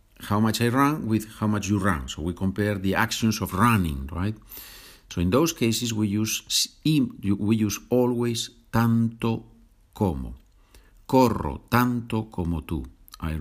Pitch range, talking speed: 90-115 Hz, 150 wpm